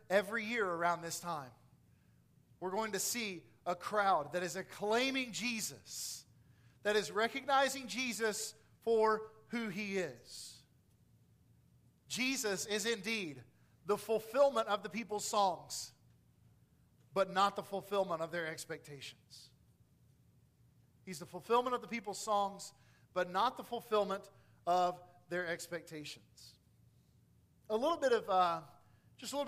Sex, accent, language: male, American, English